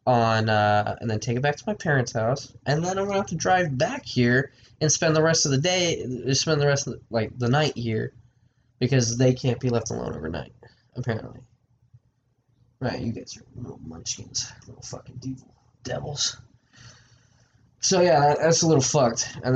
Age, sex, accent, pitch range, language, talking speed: 10-29, male, American, 115-130 Hz, English, 185 wpm